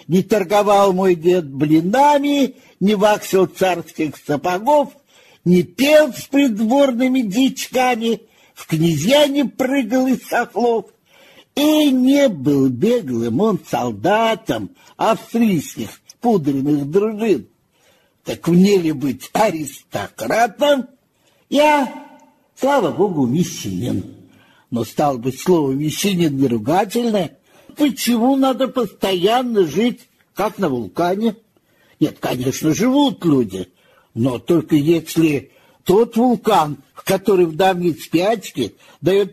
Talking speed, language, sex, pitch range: 100 wpm, Russian, male, 155-250 Hz